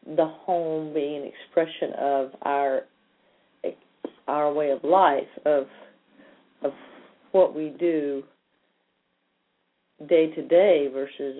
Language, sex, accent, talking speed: English, female, American, 105 wpm